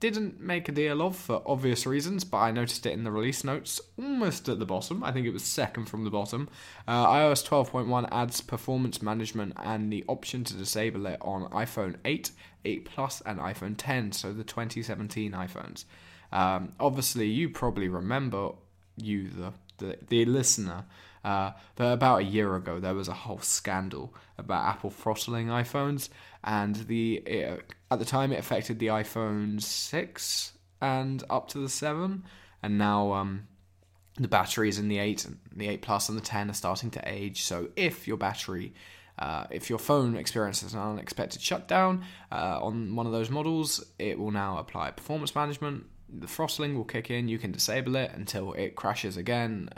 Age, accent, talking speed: 10-29, British, 180 wpm